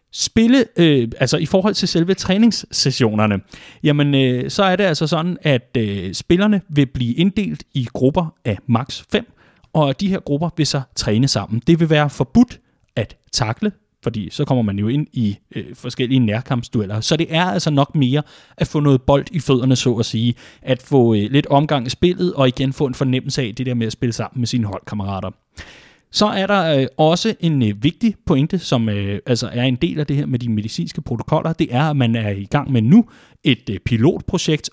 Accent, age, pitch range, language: native, 30-49, 115-160 Hz, Danish